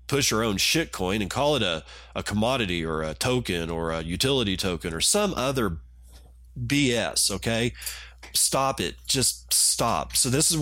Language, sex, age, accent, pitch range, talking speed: English, male, 40-59, American, 85-110 Hz, 170 wpm